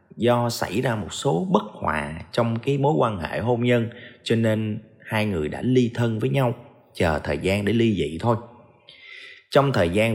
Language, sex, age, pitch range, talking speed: Vietnamese, male, 20-39, 85-125 Hz, 195 wpm